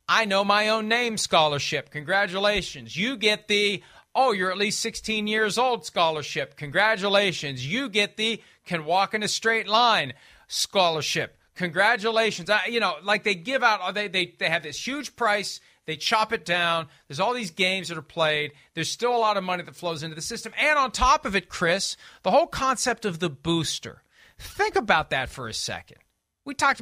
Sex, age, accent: male, 40-59, American